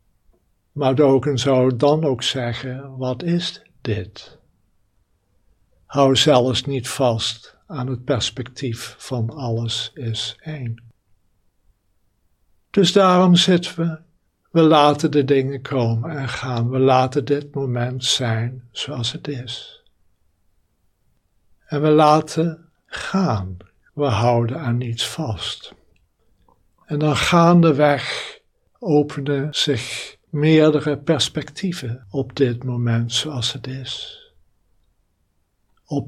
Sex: male